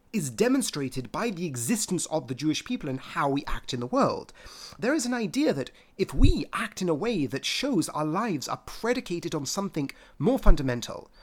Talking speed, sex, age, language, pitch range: 200 wpm, male, 30-49, English, 150-225 Hz